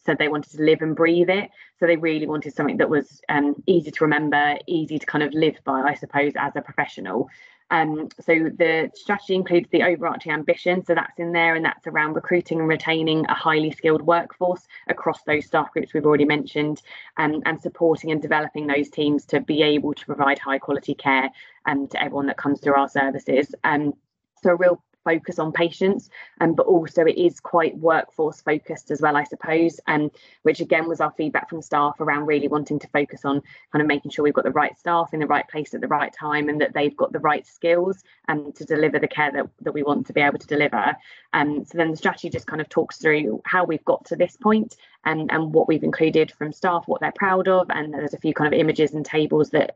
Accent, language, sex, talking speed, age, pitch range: British, English, female, 240 wpm, 20-39, 145-165 Hz